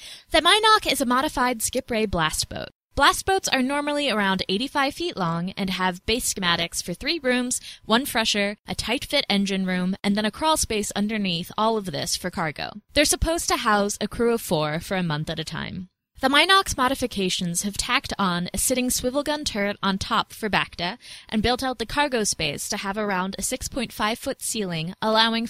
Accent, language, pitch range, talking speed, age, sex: American, English, 190-265 Hz, 205 wpm, 20-39, female